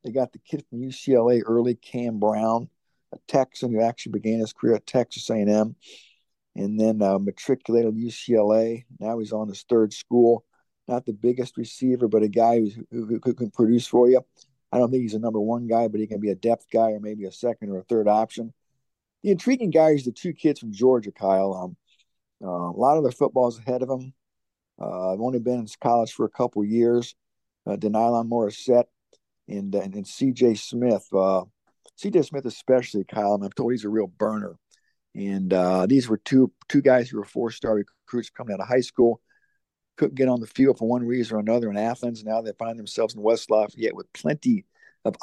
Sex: male